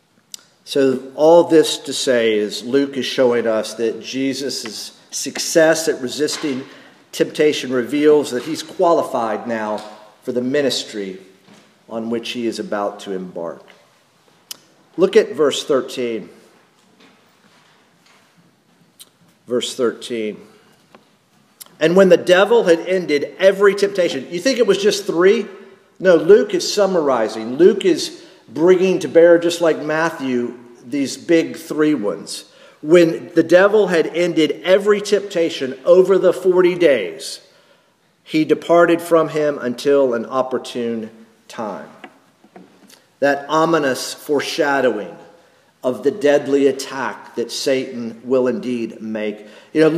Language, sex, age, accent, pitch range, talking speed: English, male, 50-69, American, 125-180 Hz, 120 wpm